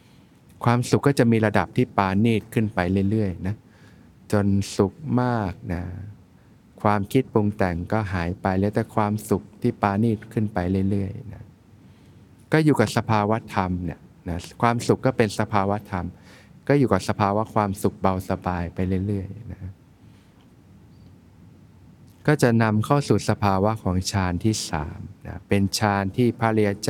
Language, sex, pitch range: Thai, male, 95-110 Hz